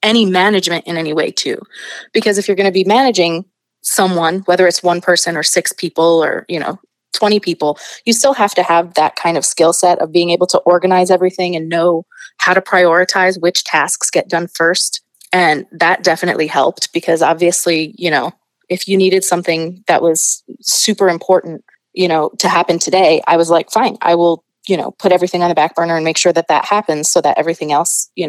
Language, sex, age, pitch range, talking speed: English, female, 20-39, 170-195 Hz, 210 wpm